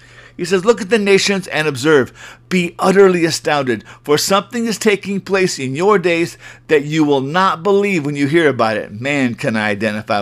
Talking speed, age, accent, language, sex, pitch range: 195 wpm, 50-69, American, English, male, 135-185 Hz